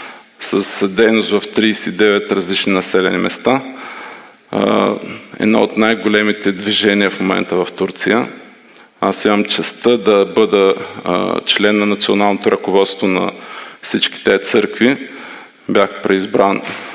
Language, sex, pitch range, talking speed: Bulgarian, male, 100-115 Hz, 105 wpm